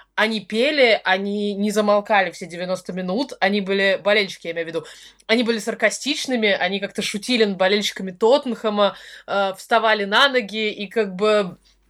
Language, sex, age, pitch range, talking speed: Russian, female, 20-39, 185-220 Hz, 155 wpm